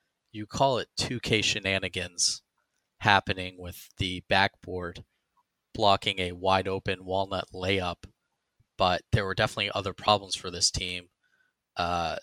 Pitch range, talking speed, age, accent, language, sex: 90-110 Hz, 120 wpm, 20-39, American, English, male